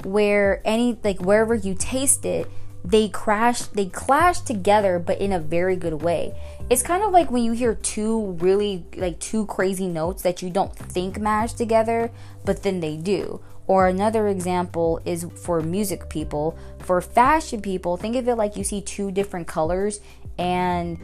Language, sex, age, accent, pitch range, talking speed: English, female, 20-39, American, 175-225 Hz, 175 wpm